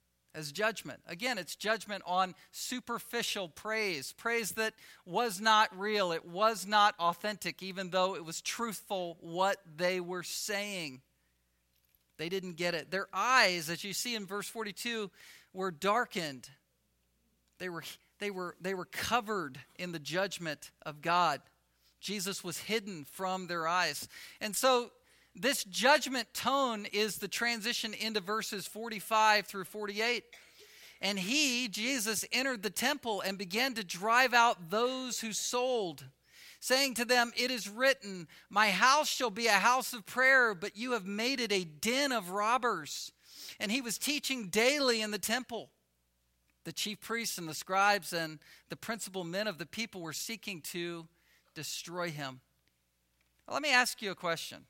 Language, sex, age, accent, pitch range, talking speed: English, male, 50-69, American, 170-230 Hz, 155 wpm